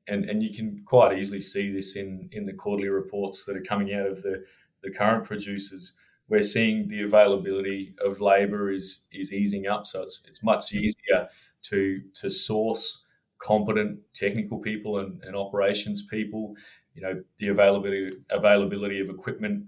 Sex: male